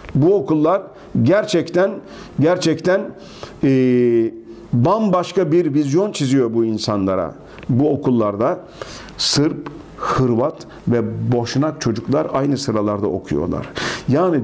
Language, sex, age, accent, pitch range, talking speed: Turkish, male, 50-69, native, 115-150 Hz, 90 wpm